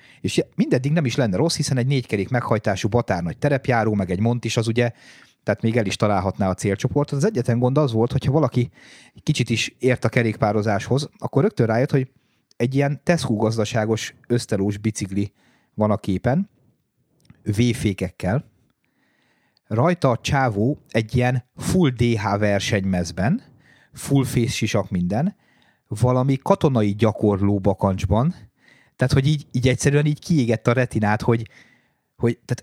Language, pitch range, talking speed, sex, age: Hungarian, 105-130 Hz, 145 wpm, male, 30-49